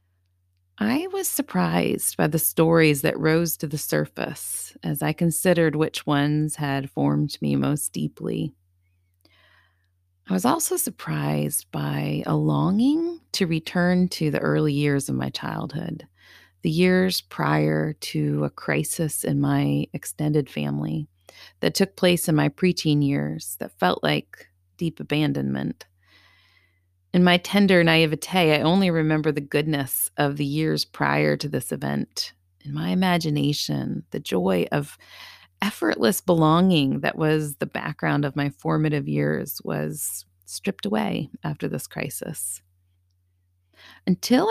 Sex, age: female, 40-59